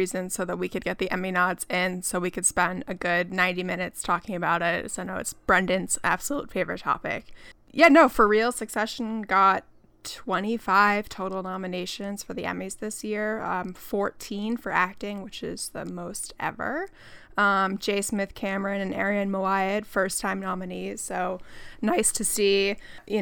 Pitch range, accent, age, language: 185-215 Hz, American, 20-39, English